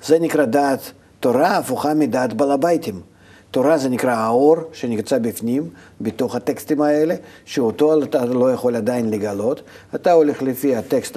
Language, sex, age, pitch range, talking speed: Hebrew, male, 50-69, 115-150 Hz, 145 wpm